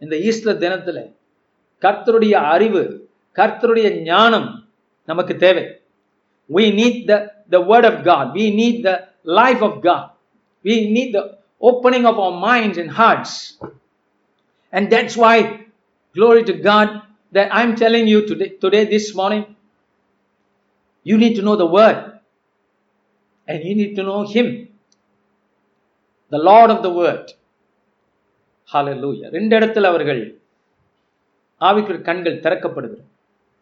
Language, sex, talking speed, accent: Tamil, male, 120 wpm, native